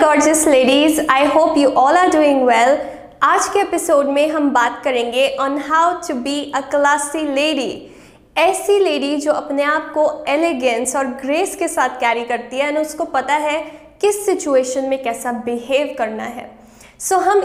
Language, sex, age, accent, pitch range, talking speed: Hindi, female, 20-39, native, 265-335 Hz, 170 wpm